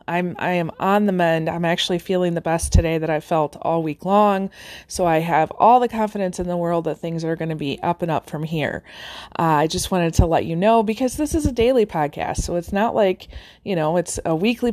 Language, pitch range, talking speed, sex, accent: English, 170-215 Hz, 250 wpm, female, American